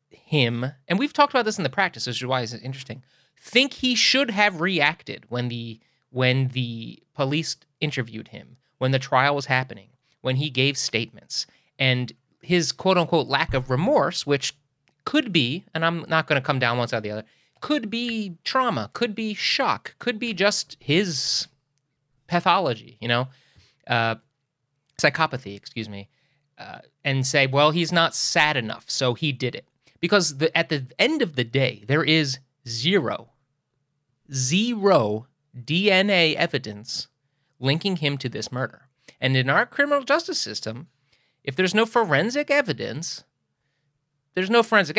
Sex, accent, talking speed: male, American, 155 wpm